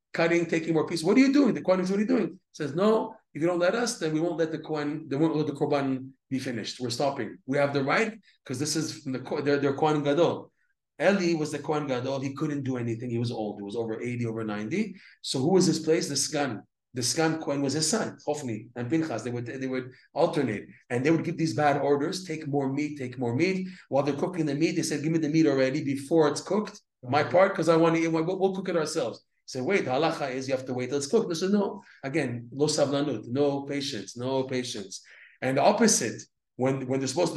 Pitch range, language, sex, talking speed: 130-165 Hz, English, male, 250 wpm